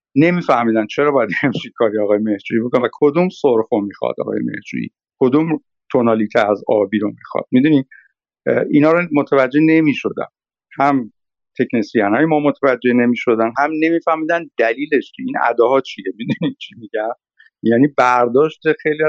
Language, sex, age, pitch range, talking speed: Persian, male, 50-69, 110-145 Hz, 140 wpm